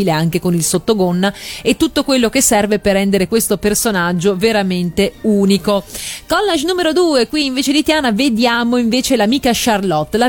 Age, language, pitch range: 30-49, Italian, 195-235 Hz